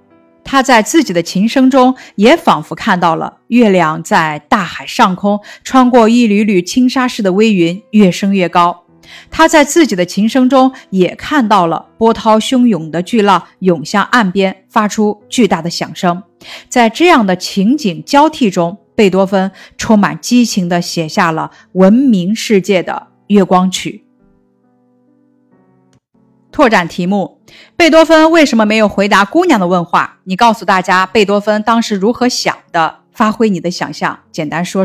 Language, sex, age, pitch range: Chinese, female, 50-69, 180-245 Hz